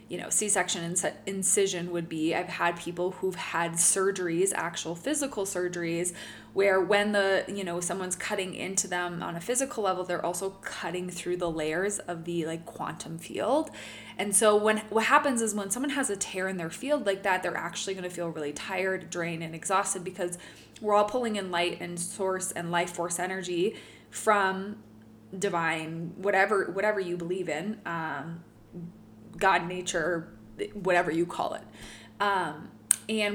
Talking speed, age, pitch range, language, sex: 165 wpm, 20-39, 170-200 Hz, English, female